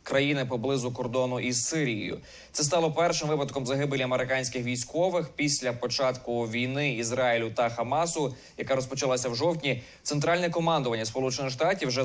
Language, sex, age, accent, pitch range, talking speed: Ukrainian, male, 20-39, native, 125-145 Hz, 130 wpm